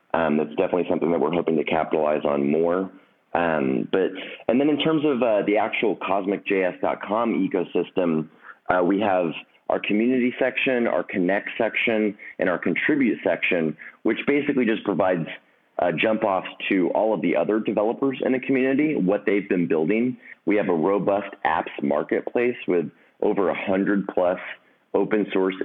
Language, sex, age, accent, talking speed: English, male, 30-49, American, 150 wpm